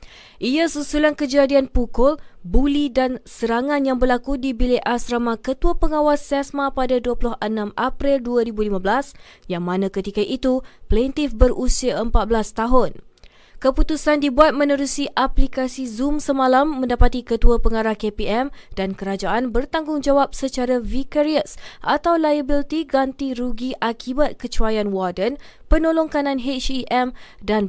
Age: 20-39